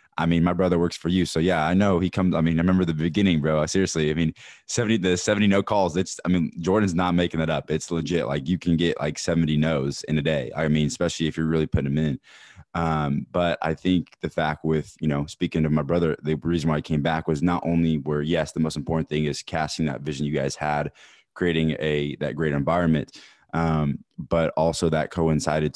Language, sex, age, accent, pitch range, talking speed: English, male, 20-39, American, 75-85 Hz, 240 wpm